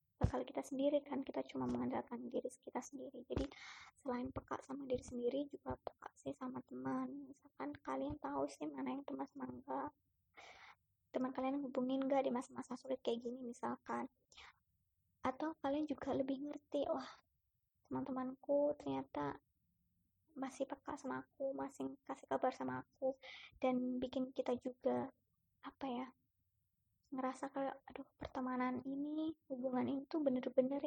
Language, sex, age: Indonesian, male, 20-39